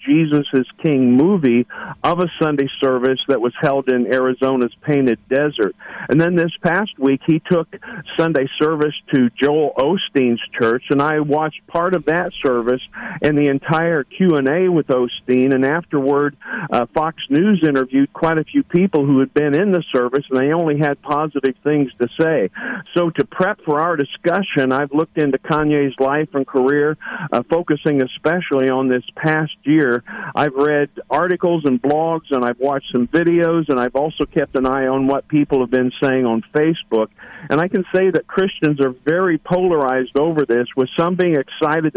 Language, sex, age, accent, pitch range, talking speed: English, male, 50-69, American, 130-160 Hz, 175 wpm